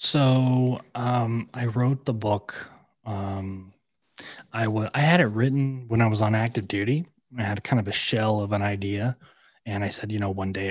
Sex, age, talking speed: male, 20-39, 195 wpm